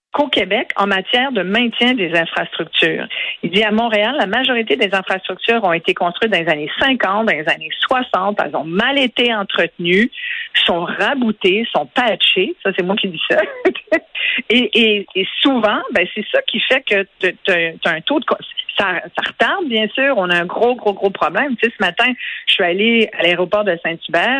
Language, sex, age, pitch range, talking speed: French, female, 50-69, 180-235 Hz, 195 wpm